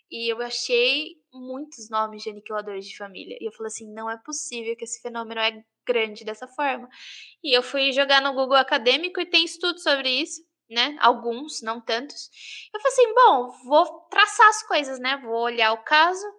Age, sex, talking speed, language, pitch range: 10-29, female, 190 wpm, Portuguese, 230-290 Hz